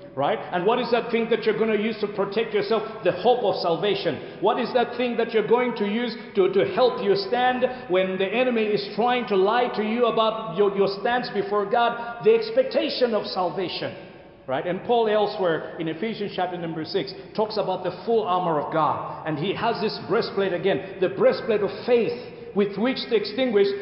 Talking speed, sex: 205 wpm, male